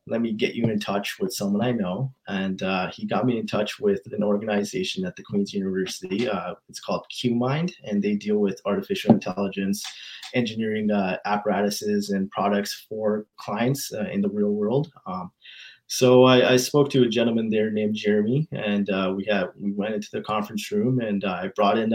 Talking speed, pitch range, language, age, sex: 195 wpm, 105-135 Hz, English, 20-39, male